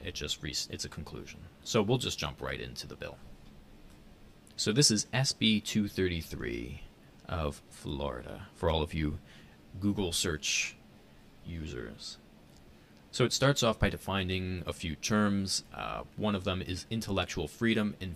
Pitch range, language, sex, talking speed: 75-100 Hz, English, male, 150 wpm